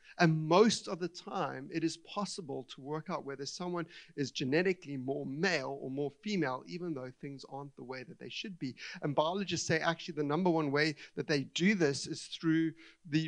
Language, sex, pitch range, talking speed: English, male, 135-175 Hz, 205 wpm